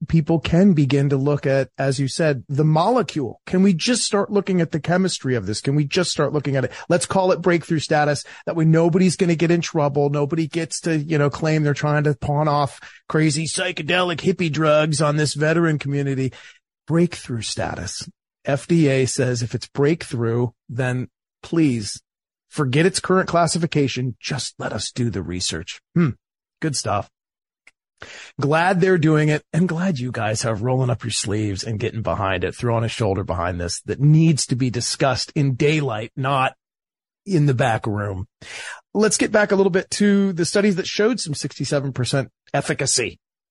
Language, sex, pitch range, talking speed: English, male, 130-175 Hz, 180 wpm